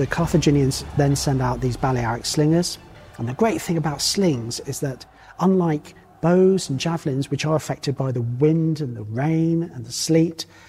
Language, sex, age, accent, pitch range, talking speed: English, male, 40-59, British, 120-145 Hz, 180 wpm